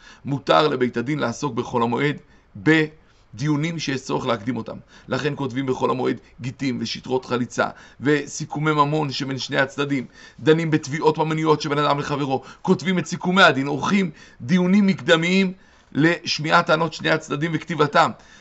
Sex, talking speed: male, 135 wpm